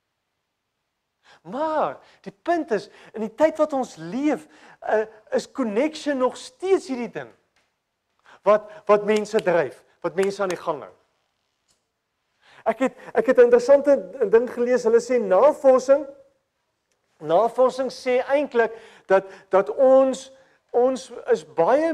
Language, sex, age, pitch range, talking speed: English, male, 40-59, 195-275 Hz, 115 wpm